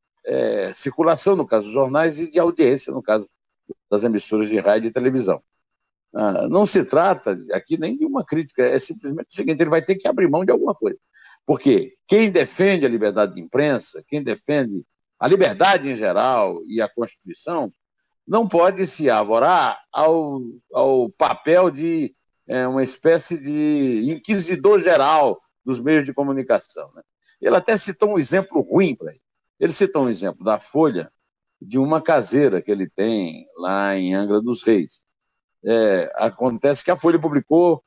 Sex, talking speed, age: male, 160 wpm, 60-79